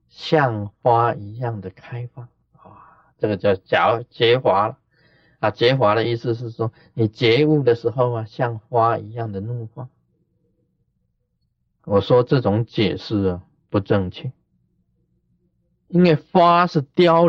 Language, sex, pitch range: Chinese, male, 105-155 Hz